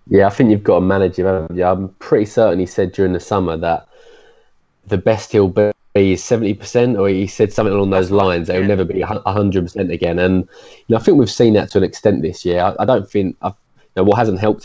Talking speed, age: 240 wpm, 20-39